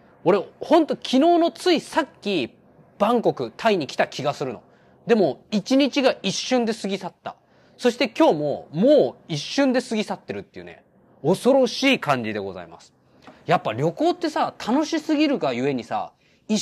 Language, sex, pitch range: Japanese, male, 175-280 Hz